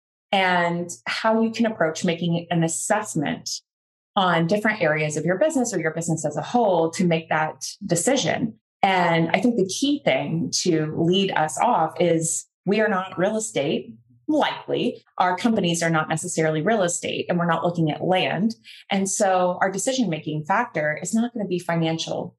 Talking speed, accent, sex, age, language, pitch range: 175 wpm, American, female, 20-39, English, 165-215 Hz